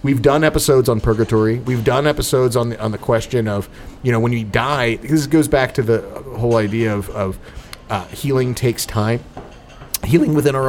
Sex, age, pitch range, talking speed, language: male, 30-49, 105-140 Hz, 195 wpm, English